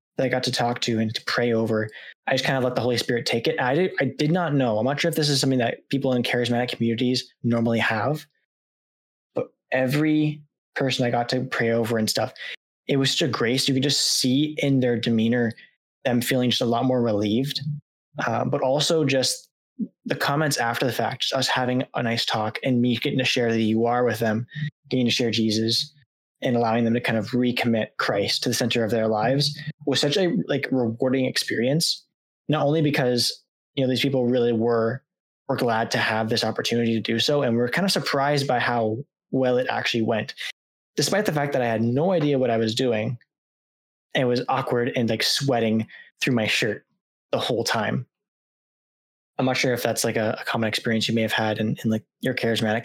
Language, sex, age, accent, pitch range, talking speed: English, male, 20-39, American, 115-140 Hz, 215 wpm